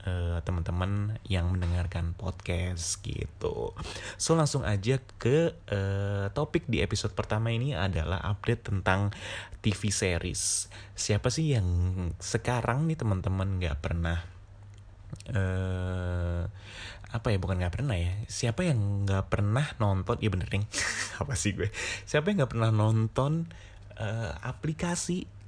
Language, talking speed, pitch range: Indonesian, 125 wpm, 95-115 Hz